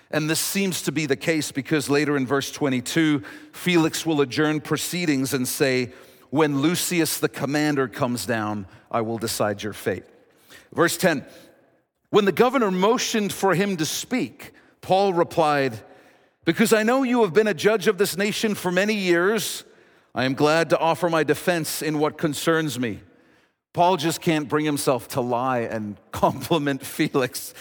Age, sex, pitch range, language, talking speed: 50-69, male, 140-195 Hz, English, 165 wpm